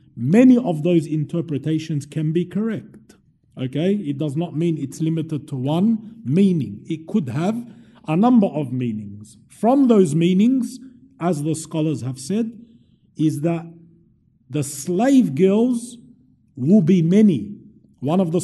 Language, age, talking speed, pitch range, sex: English, 50-69, 140 wpm, 150-205 Hz, male